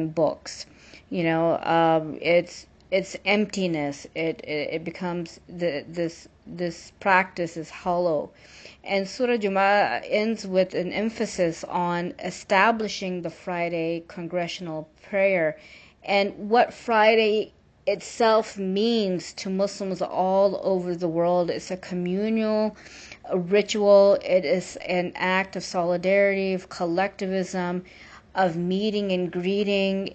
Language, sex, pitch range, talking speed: English, female, 175-200 Hz, 115 wpm